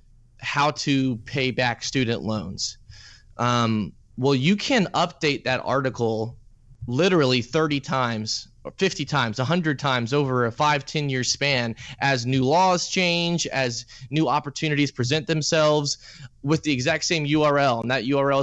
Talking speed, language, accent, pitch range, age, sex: 145 wpm, English, American, 125-155 Hz, 20-39, male